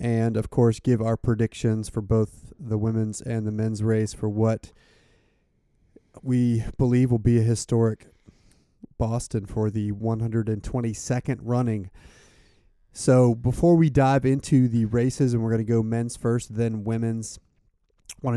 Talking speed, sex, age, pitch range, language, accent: 145 wpm, male, 30-49, 110-125 Hz, English, American